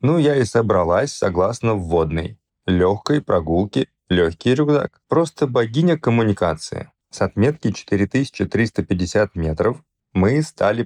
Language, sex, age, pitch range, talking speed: Russian, male, 20-39, 95-120 Hz, 105 wpm